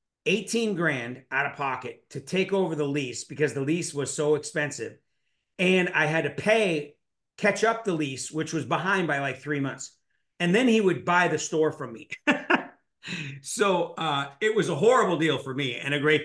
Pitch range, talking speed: 130-160 Hz, 195 wpm